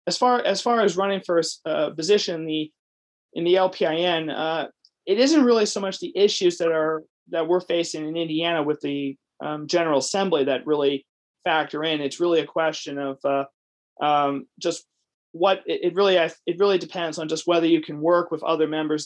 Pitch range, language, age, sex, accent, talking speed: 145-170 Hz, English, 30-49, male, American, 210 wpm